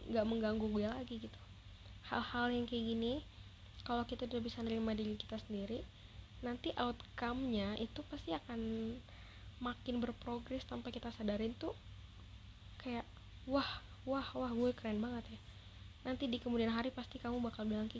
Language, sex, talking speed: Indonesian, female, 145 wpm